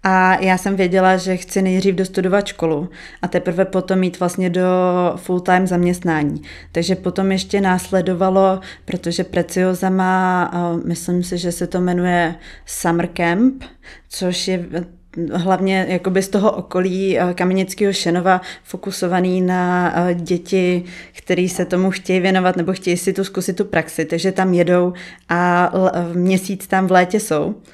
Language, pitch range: Czech, 180-195 Hz